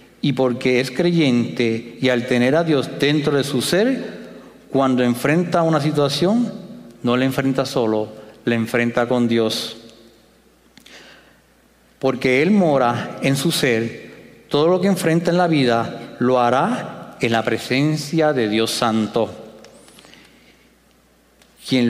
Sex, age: male, 50-69